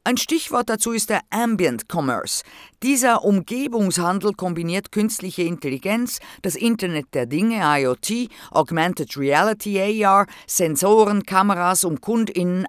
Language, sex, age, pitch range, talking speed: German, female, 50-69, 160-220 Hz, 115 wpm